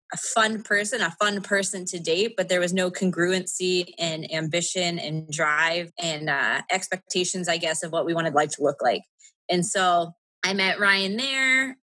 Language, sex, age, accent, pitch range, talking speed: English, female, 20-39, American, 185-225 Hz, 185 wpm